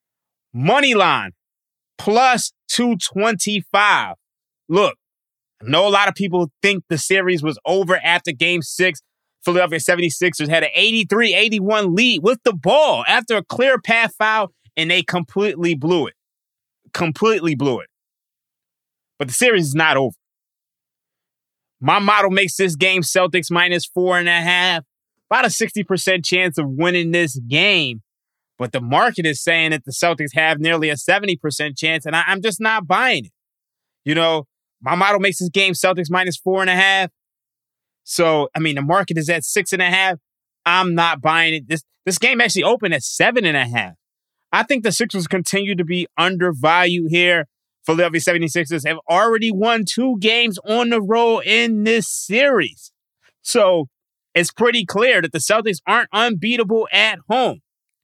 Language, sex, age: English, male, 20-39